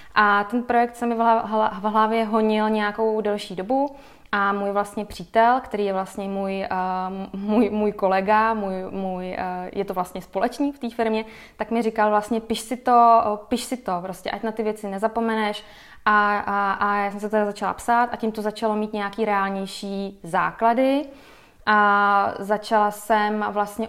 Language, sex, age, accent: Czech, female, 20-39, native